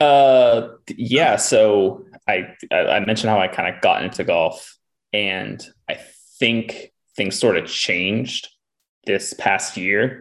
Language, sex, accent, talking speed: English, male, American, 135 wpm